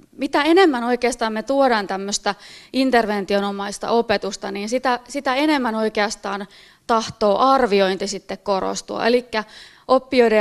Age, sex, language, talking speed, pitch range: 30-49, female, Finnish, 110 wpm, 205-255 Hz